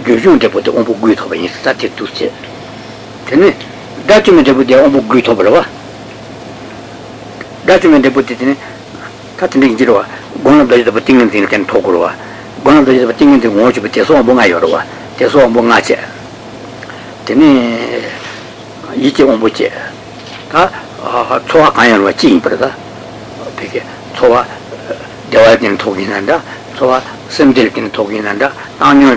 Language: Italian